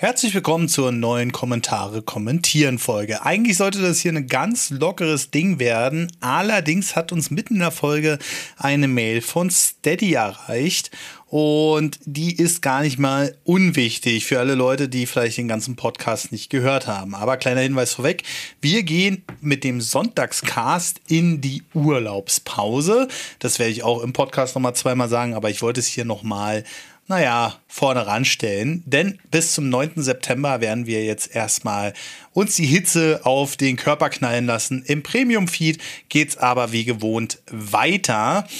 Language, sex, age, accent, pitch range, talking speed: German, male, 30-49, German, 125-170 Hz, 155 wpm